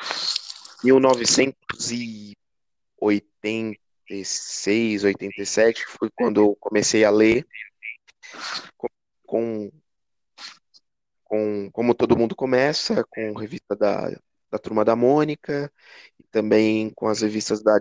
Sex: male